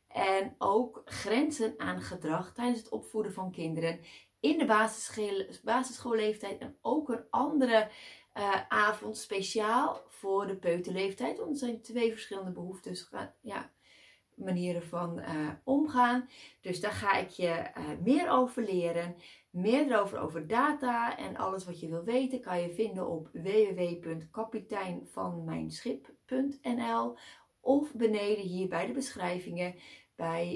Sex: female